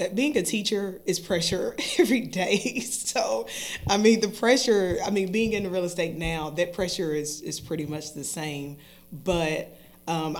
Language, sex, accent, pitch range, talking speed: English, female, American, 160-185 Hz, 165 wpm